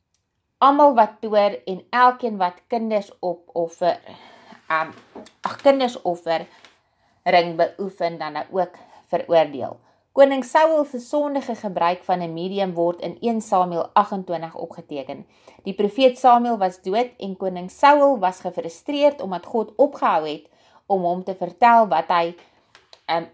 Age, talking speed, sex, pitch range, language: 30-49, 130 wpm, female, 170-225 Hz, English